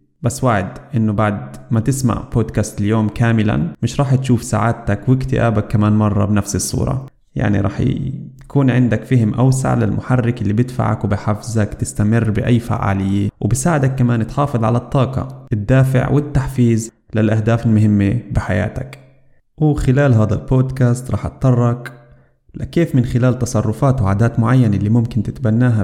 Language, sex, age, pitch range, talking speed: Arabic, male, 20-39, 110-130 Hz, 130 wpm